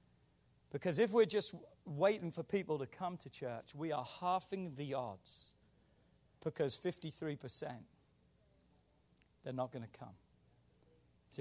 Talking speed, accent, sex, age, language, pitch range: 125 wpm, British, male, 40-59, English, 140-200 Hz